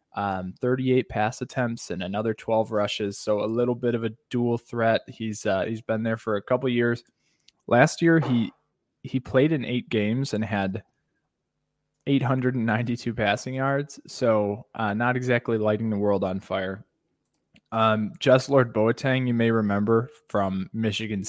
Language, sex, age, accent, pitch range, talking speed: English, male, 20-39, American, 105-130 Hz, 160 wpm